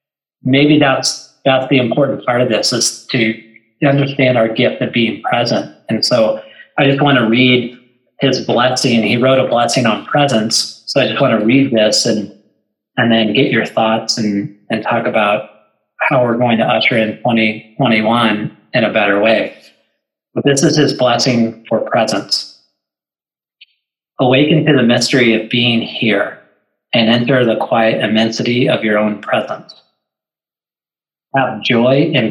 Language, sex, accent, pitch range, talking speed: English, male, American, 110-130 Hz, 160 wpm